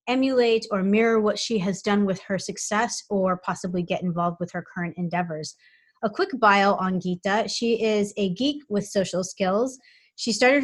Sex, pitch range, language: female, 185-220 Hz, English